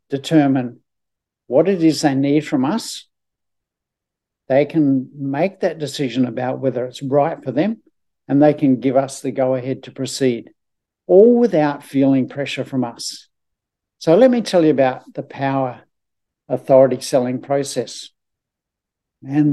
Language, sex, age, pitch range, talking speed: English, male, 60-79, 130-150 Hz, 145 wpm